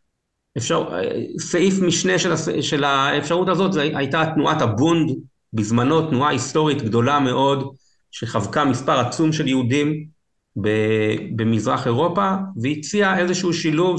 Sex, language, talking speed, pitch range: male, English, 115 wpm, 120-155 Hz